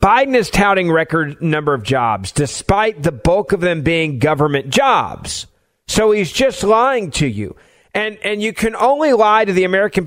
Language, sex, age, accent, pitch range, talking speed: English, male, 40-59, American, 150-205 Hz, 180 wpm